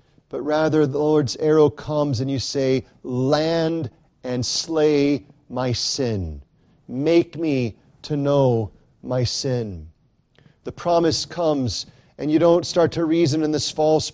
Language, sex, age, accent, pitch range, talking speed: English, male, 40-59, American, 135-170 Hz, 135 wpm